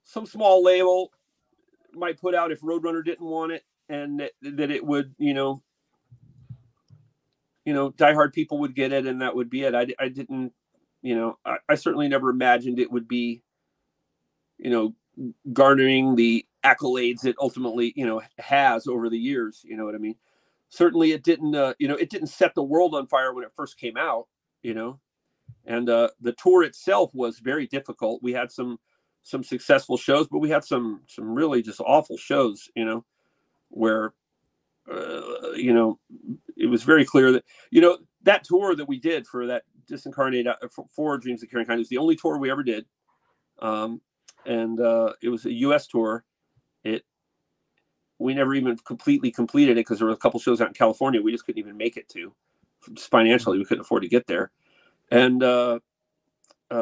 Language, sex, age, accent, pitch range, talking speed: English, male, 40-59, American, 120-160 Hz, 190 wpm